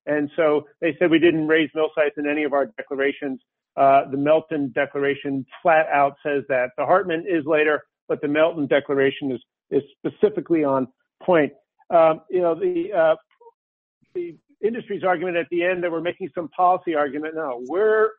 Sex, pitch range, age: male, 150-200 Hz, 50-69